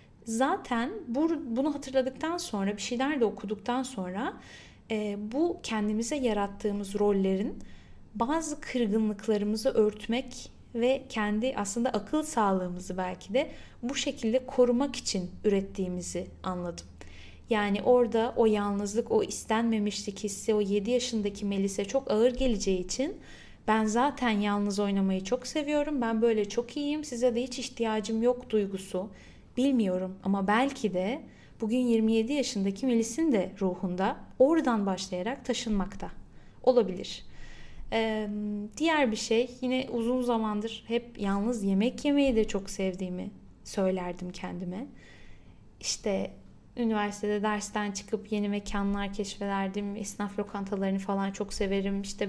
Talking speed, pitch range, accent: 120 wpm, 200-250 Hz, native